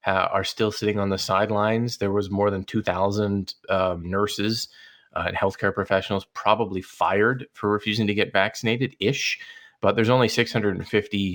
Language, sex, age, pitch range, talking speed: English, male, 30-49, 95-110 Hz, 150 wpm